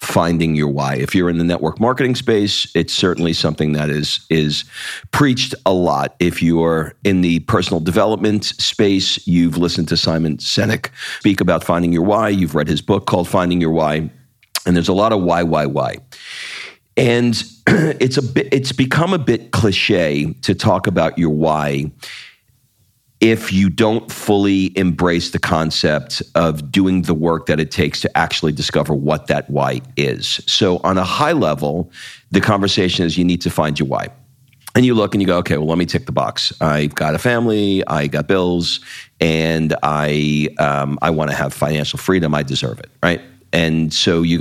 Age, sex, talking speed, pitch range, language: 50-69, male, 185 wpm, 80-105 Hz, English